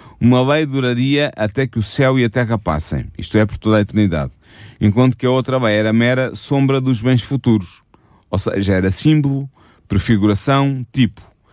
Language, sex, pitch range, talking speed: Italian, male, 105-125 Hz, 175 wpm